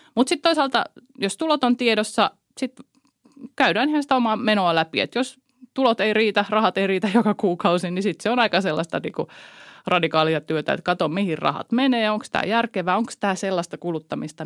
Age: 30-49